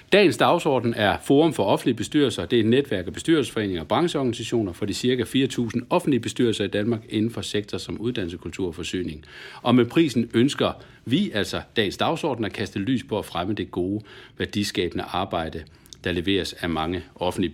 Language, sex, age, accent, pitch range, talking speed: Danish, male, 60-79, native, 100-145 Hz, 185 wpm